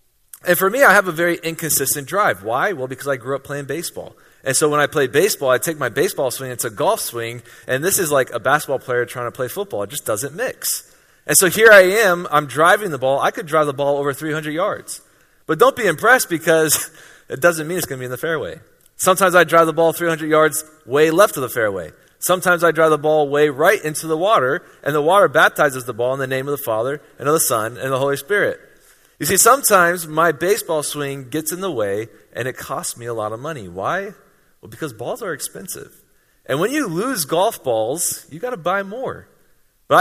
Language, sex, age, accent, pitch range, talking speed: English, male, 30-49, American, 135-180 Hz, 235 wpm